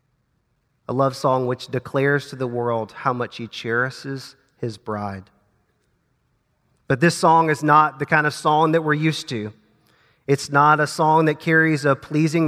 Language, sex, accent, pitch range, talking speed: English, male, American, 125-150 Hz, 170 wpm